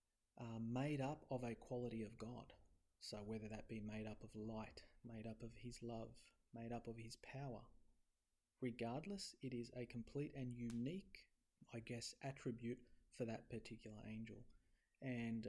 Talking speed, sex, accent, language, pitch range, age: 160 wpm, male, Australian, English, 105-120 Hz, 30-49